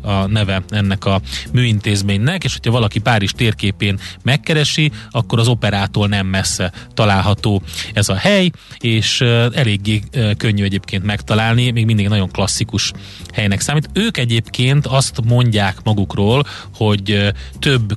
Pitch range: 100-125 Hz